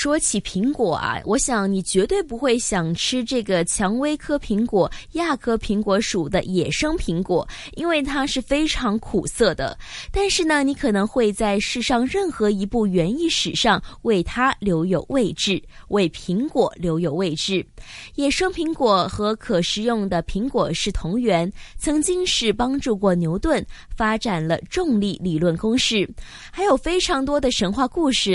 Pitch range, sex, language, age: 180-260 Hz, female, Chinese, 20-39